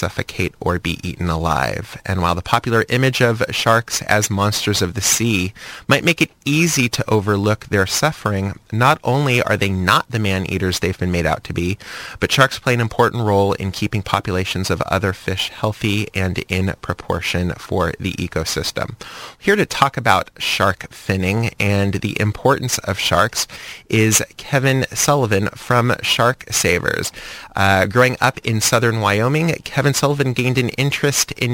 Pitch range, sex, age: 95-120 Hz, male, 20-39